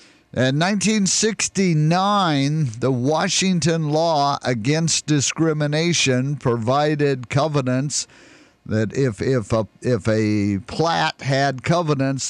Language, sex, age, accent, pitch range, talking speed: English, male, 50-69, American, 120-170 Hz, 90 wpm